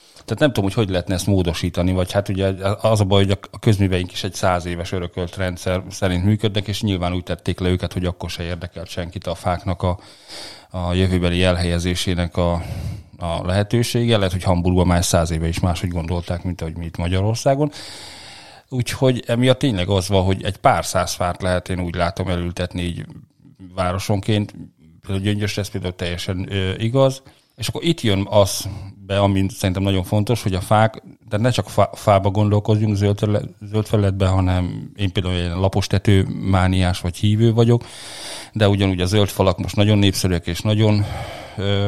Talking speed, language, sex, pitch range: 180 wpm, Hungarian, male, 90-105 Hz